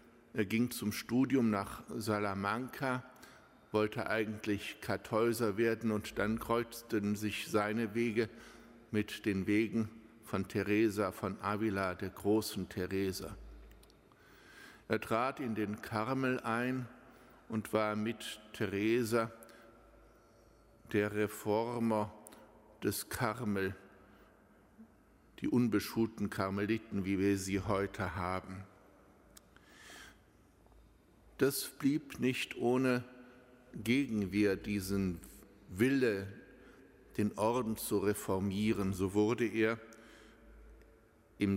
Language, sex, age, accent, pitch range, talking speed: German, male, 60-79, German, 100-120 Hz, 90 wpm